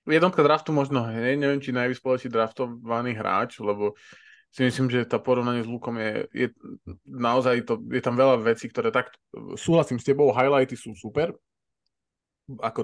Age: 20-39